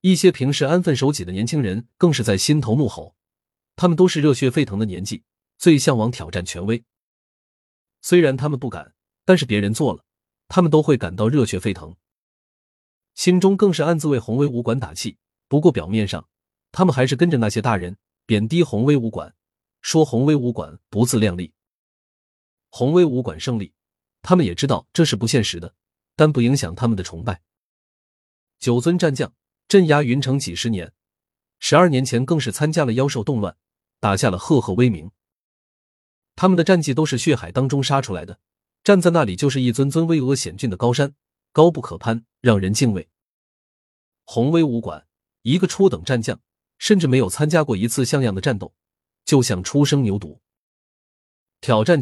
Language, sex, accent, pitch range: Chinese, male, native, 100-150 Hz